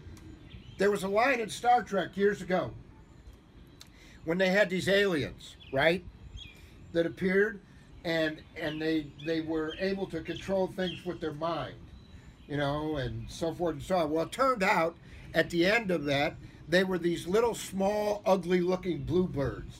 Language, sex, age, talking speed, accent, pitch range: English, male, 50-69, 160 wpm, American, 150-190 Hz